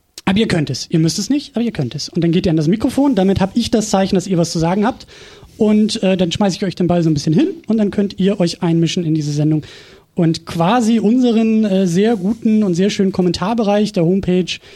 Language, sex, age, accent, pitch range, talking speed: German, male, 30-49, German, 165-215 Hz, 255 wpm